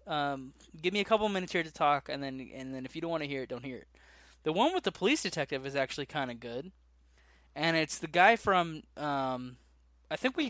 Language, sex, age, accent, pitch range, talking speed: English, male, 10-29, American, 130-165 Hz, 245 wpm